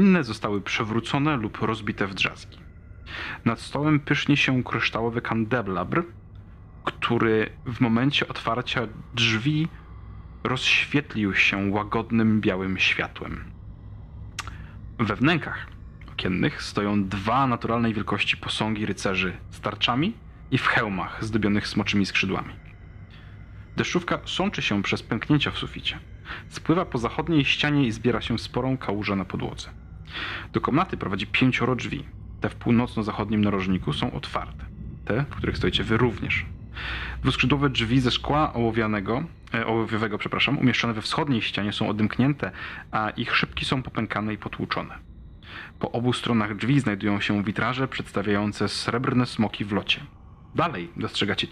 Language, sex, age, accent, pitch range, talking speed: Polish, male, 30-49, native, 100-125 Hz, 125 wpm